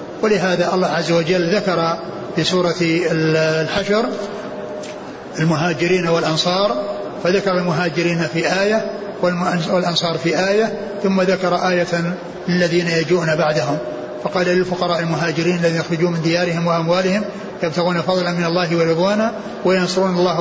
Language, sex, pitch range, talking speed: Arabic, male, 170-195 Hz, 110 wpm